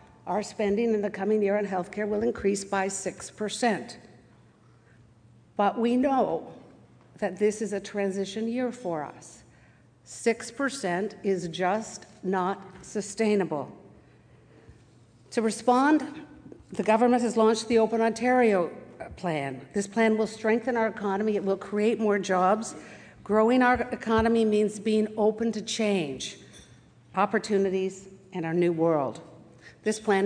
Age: 50-69